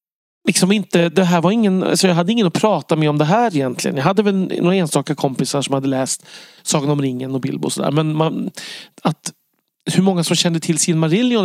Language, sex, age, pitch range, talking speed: Swedish, male, 40-59, 140-185 Hz, 215 wpm